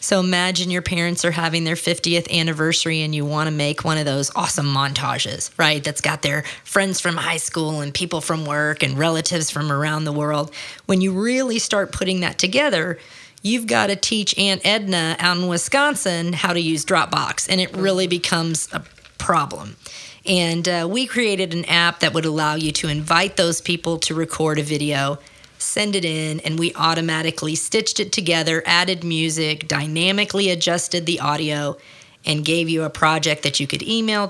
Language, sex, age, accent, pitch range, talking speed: English, female, 40-59, American, 155-185 Hz, 185 wpm